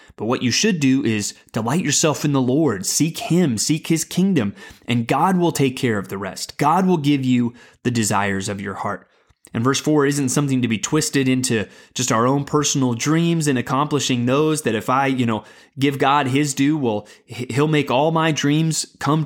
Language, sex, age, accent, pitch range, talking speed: English, male, 30-49, American, 120-155 Hz, 205 wpm